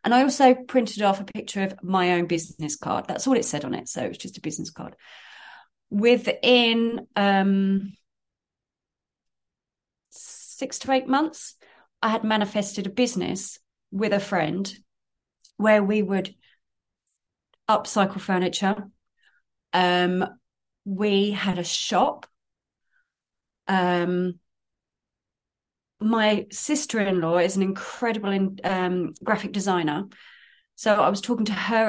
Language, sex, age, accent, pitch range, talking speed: English, female, 30-49, British, 190-215 Hz, 120 wpm